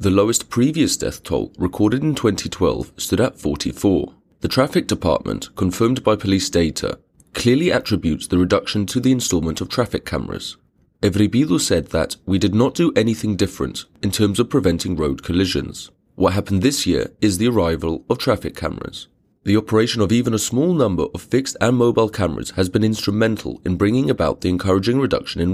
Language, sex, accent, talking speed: English, male, British, 175 wpm